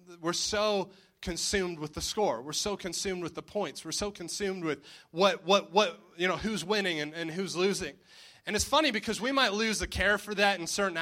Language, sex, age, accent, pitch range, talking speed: English, male, 20-39, American, 175-205 Hz, 220 wpm